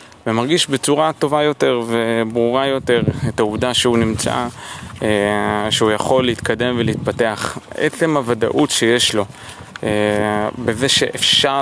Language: Hebrew